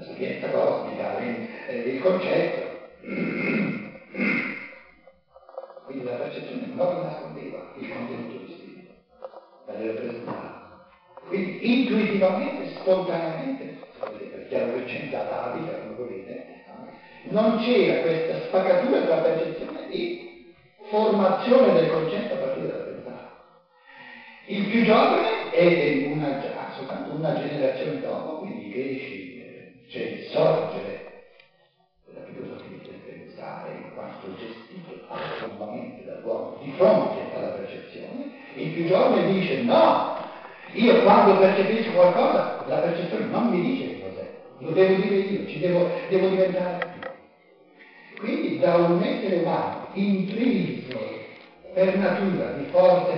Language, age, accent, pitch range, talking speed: Italian, 60-79, native, 180-260 Hz, 120 wpm